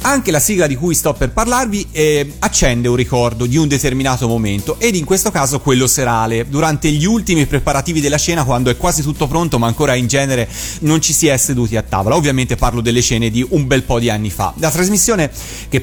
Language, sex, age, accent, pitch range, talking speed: Italian, male, 30-49, native, 120-165 Hz, 220 wpm